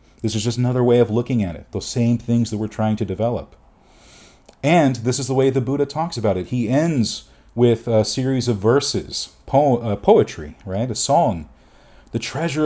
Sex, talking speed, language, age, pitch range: male, 195 wpm, English, 40-59, 95-130 Hz